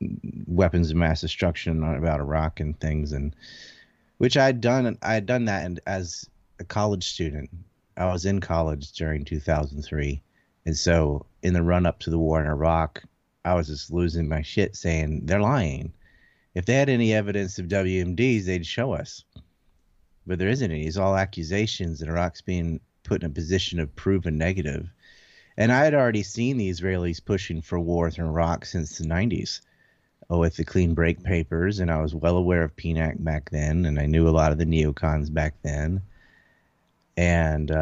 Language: English